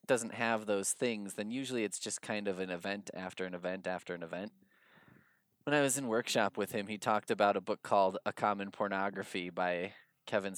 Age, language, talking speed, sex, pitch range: 20-39, English, 205 wpm, male, 95-125 Hz